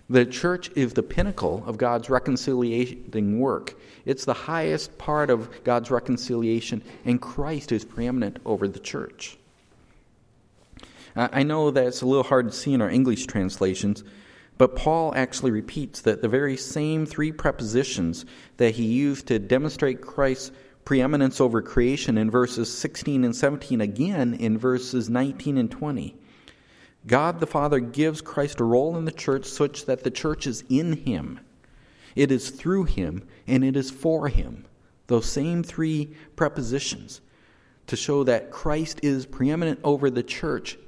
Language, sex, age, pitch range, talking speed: English, male, 40-59, 115-145 Hz, 155 wpm